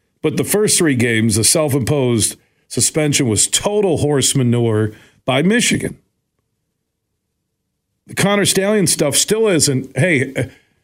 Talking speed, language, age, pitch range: 120 wpm, English, 50-69, 135-200 Hz